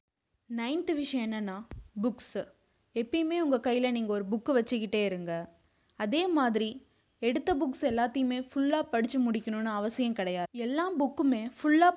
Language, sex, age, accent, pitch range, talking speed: Tamil, female, 20-39, native, 215-265 Hz, 125 wpm